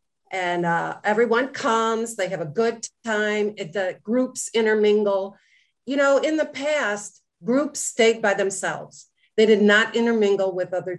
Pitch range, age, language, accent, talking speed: 175-215 Hz, 50-69, English, American, 145 wpm